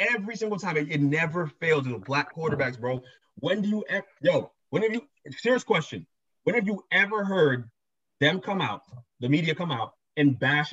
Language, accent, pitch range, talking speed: English, American, 150-210 Hz, 195 wpm